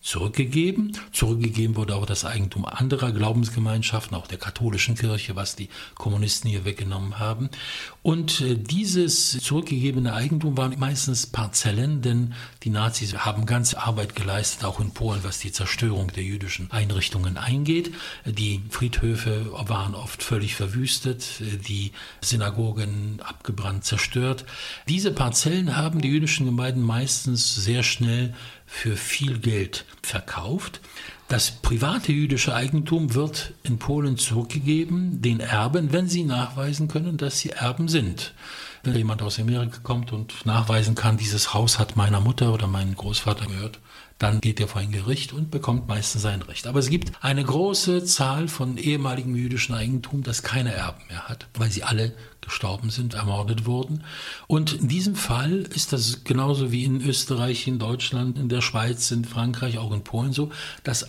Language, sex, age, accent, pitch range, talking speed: English, male, 60-79, German, 110-135 Hz, 150 wpm